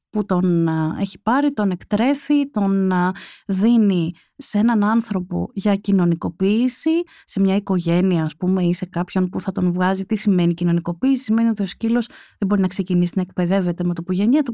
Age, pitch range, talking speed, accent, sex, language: 30-49, 190-255 Hz, 180 wpm, native, female, Greek